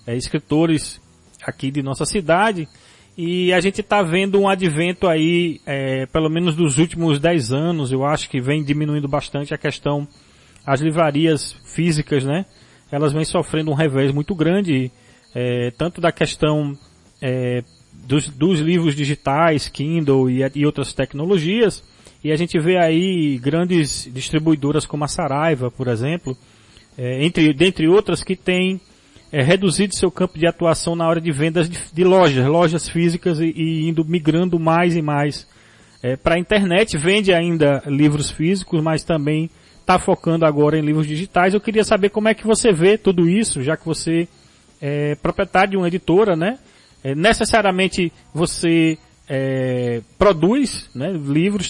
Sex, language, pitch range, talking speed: male, Portuguese, 140-175 Hz, 155 wpm